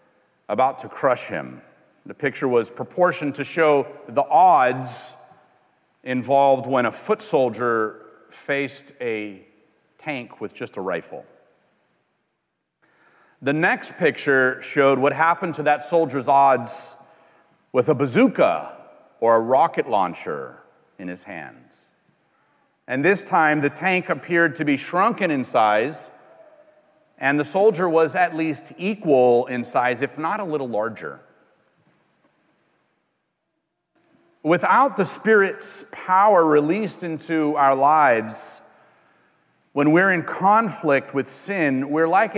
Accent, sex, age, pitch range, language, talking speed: American, male, 40-59, 135-180 Hz, English, 120 wpm